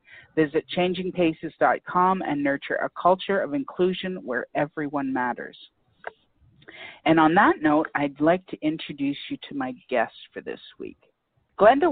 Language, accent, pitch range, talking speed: English, American, 140-175 Hz, 135 wpm